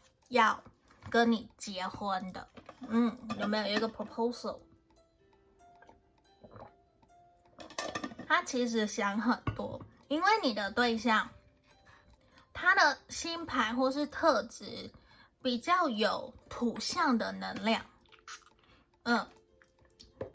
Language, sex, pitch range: Chinese, female, 220-285 Hz